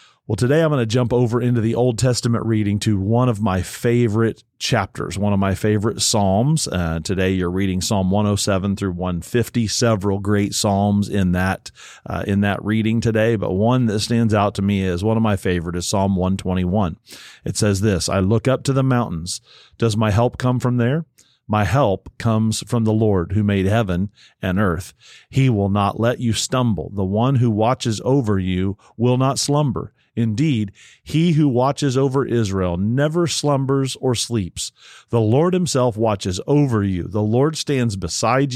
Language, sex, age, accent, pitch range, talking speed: English, male, 40-59, American, 100-125 Hz, 180 wpm